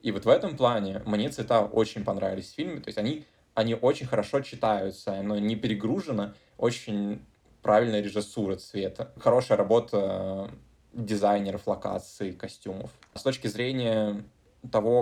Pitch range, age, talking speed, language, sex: 105-115 Hz, 20-39, 135 wpm, Russian, male